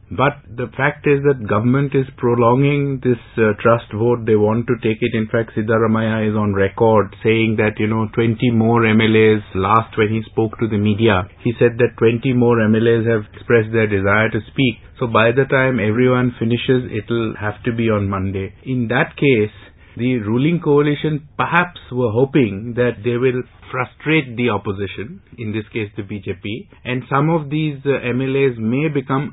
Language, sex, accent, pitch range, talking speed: English, male, Indian, 110-135 Hz, 180 wpm